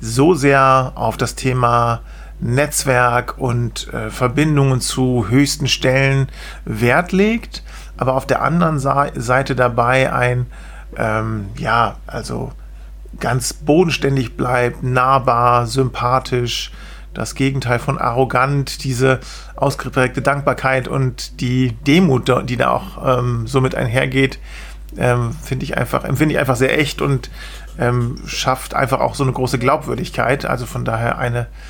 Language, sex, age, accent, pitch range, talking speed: English, male, 40-59, German, 120-140 Hz, 125 wpm